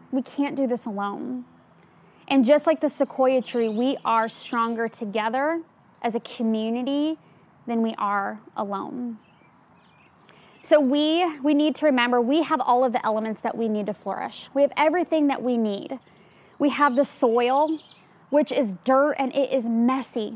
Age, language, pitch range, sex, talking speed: 20-39, English, 230-275 Hz, female, 165 wpm